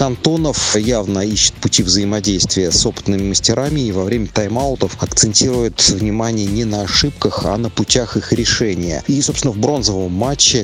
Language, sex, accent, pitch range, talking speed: Russian, male, native, 100-120 Hz, 150 wpm